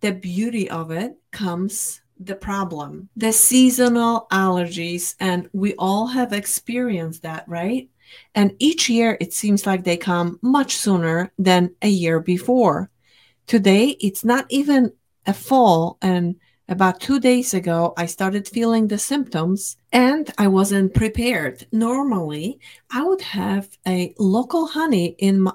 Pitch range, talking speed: 180-230 Hz, 140 wpm